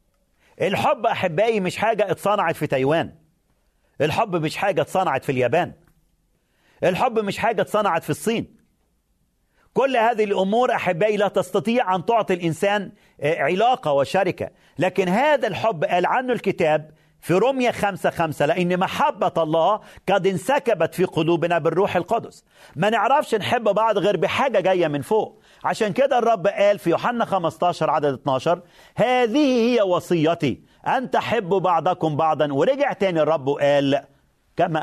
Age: 40-59